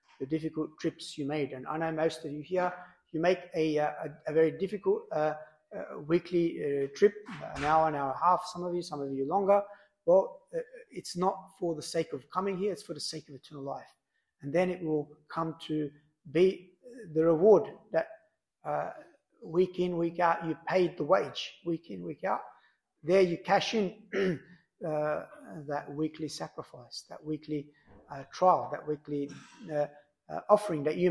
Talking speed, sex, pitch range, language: 185 wpm, male, 155-195 Hz, English